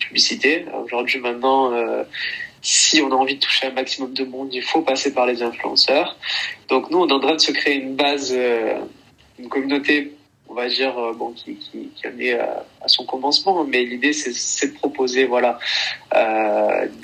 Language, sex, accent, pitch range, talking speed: French, male, French, 125-150 Hz, 195 wpm